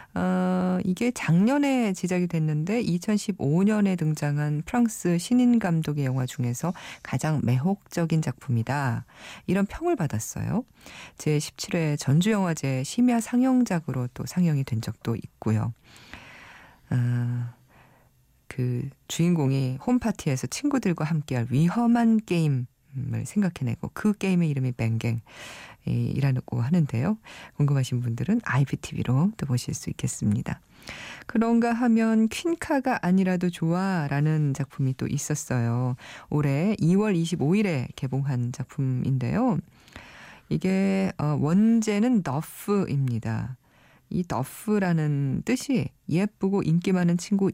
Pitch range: 130-195 Hz